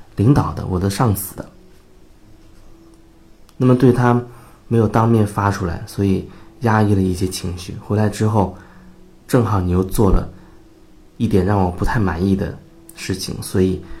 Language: Chinese